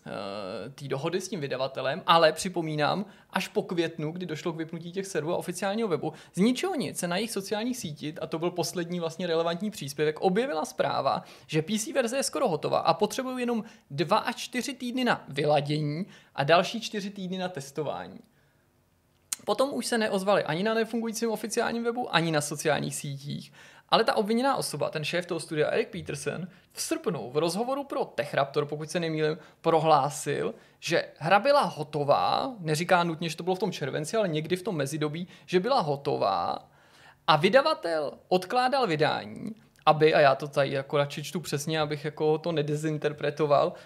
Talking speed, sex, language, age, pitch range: 170 wpm, male, Czech, 20-39, 155-215 Hz